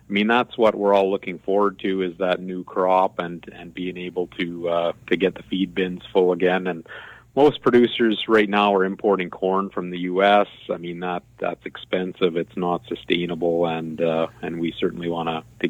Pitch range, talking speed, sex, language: 90-110 Hz, 200 wpm, male, English